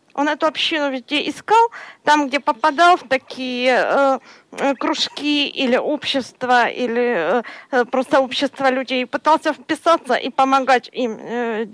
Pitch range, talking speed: 245-310 Hz, 130 wpm